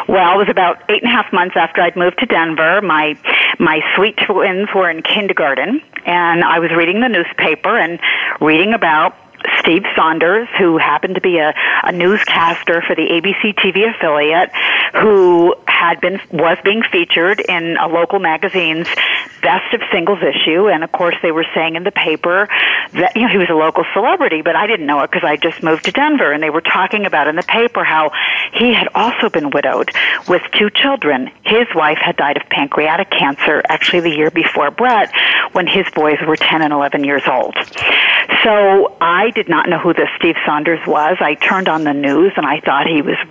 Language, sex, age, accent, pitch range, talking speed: English, female, 50-69, American, 160-205 Hz, 200 wpm